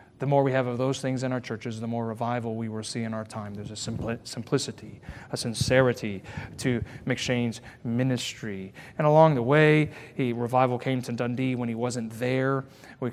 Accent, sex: American, male